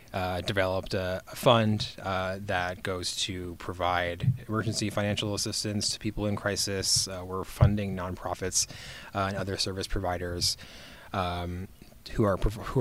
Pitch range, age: 90-110 Hz, 20-39